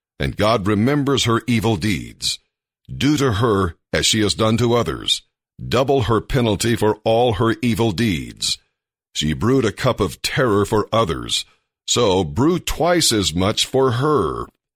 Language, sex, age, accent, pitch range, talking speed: English, male, 60-79, American, 100-120 Hz, 155 wpm